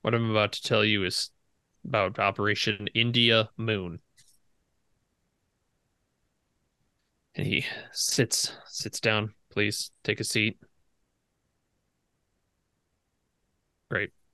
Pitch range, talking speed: 105-125 Hz, 90 wpm